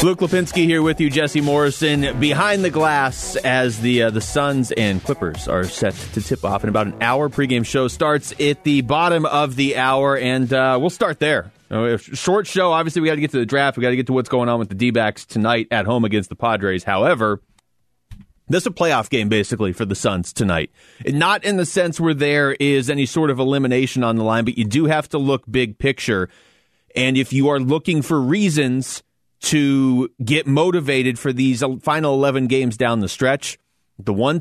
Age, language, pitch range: 30-49, English, 120-155 Hz